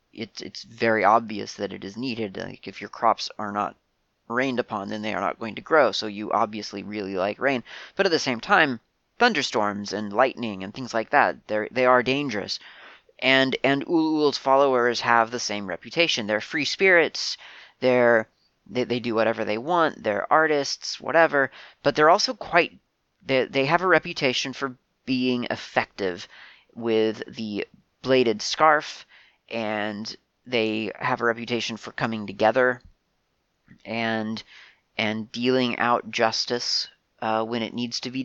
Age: 30-49